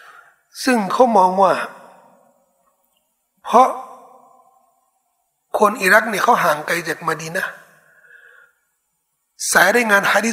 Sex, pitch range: male, 185-275 Hz